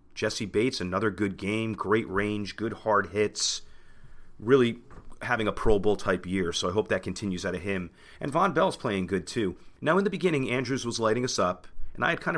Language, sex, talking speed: English, male, 215 wpm